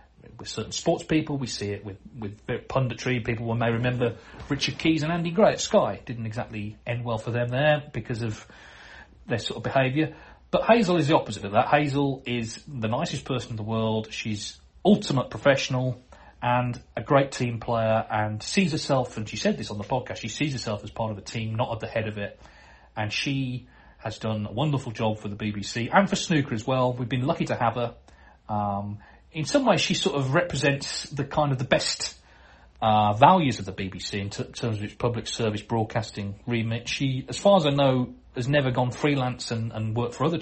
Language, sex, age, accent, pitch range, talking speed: English, male, 30-49, British, 105-135 Hz, 210 wpm